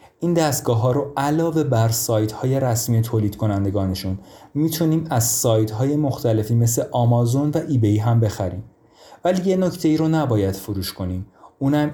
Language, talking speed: Persian, 150 wpm